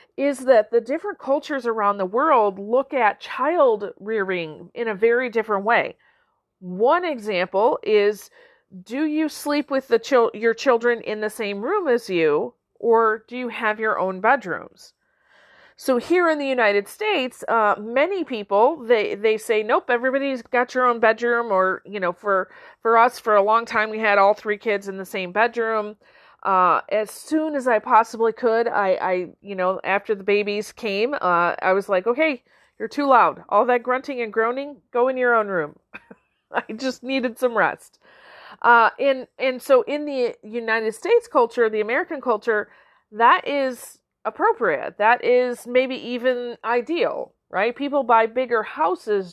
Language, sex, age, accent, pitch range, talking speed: English, female, 40-59, American, 210-270 Hz, 170 wpm